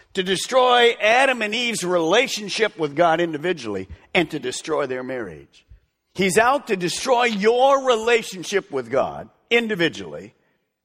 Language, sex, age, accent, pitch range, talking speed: English, male, 50-69, American, 130-210 Hz, 125 wpm